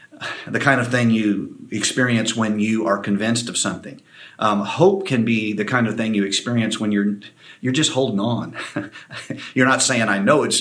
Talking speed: 190 wpm